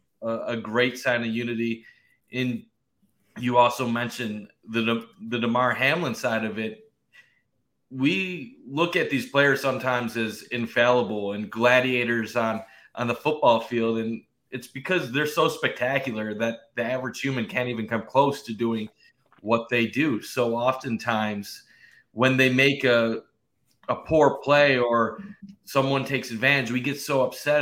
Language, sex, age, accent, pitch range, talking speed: English, male, 30-49, American, 115-140 Hz, 145 wpm